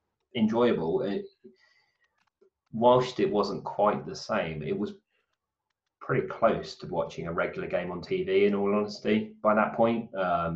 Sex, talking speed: male, 150 wpm